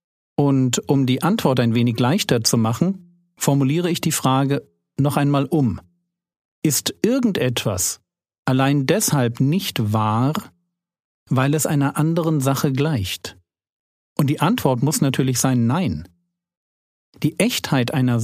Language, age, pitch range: German, 40-59, 125-175 Hz